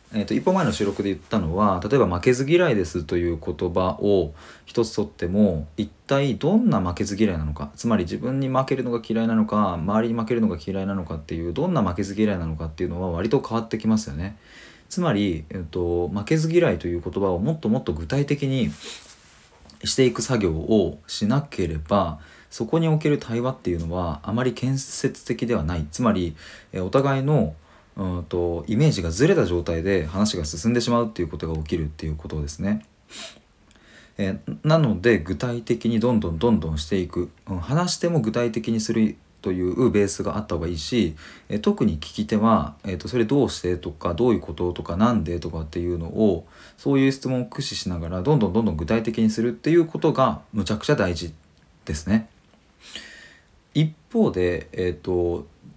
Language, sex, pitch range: Japanese, male, 85-120 Hz